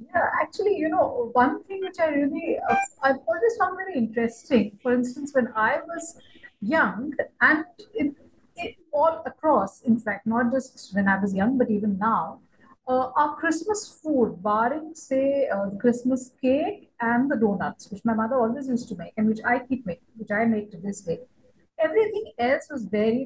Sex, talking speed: female, 180 wpm